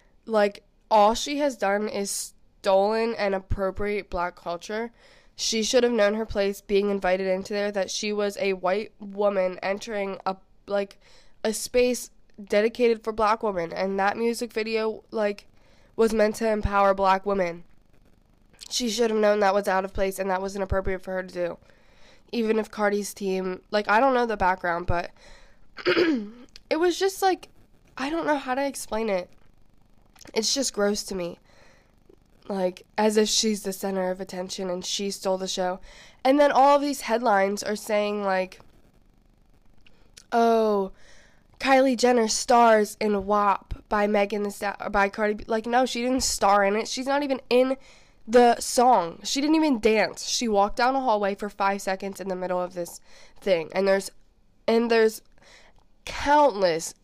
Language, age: English, 10-29